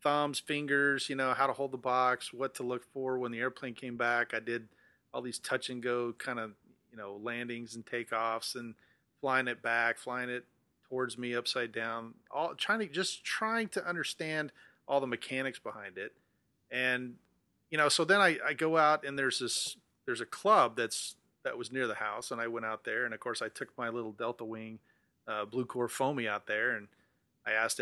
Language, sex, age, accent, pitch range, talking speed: English, male, 40-59, American, 115-140 Hz, 210 wpm